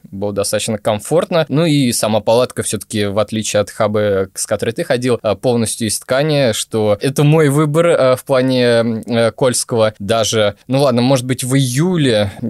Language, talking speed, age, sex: Russian, 160 wpm, 20-39, male